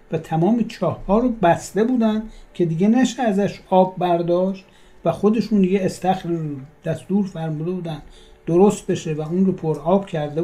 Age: 60-79